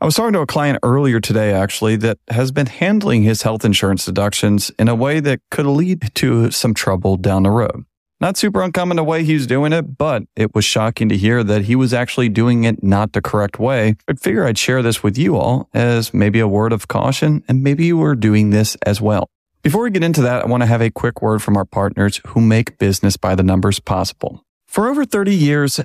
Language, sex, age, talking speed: English, male, 40-59, 235 wpm